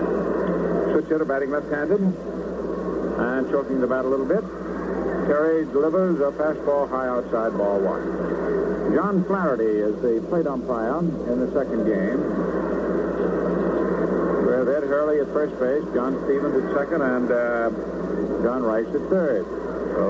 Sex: male